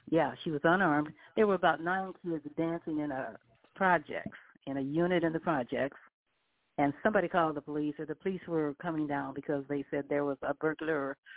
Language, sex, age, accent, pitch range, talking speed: English, female, 60-79, American, 145-170 Hz, 195 wpm